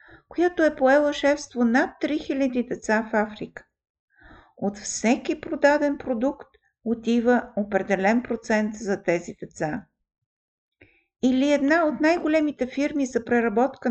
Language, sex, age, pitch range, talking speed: Bulgarian, female, 50-69, 205-275 Hz, 110 wpm